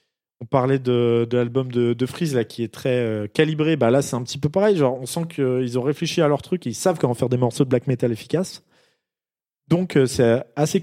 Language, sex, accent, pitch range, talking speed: French, male, French, 120-160 Hz, 255 wpm